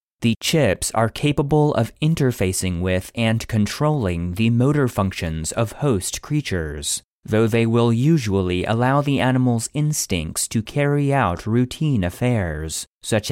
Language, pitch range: English, 90-135 Hz